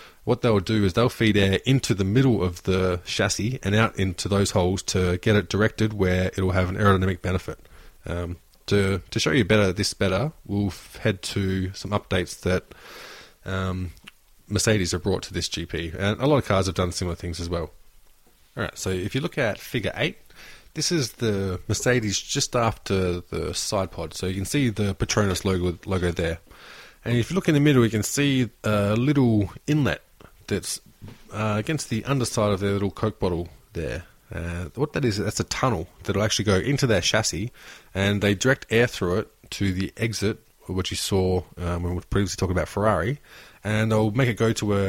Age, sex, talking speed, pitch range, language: 20-39, male, 200 wpm, 95-115 Hz, English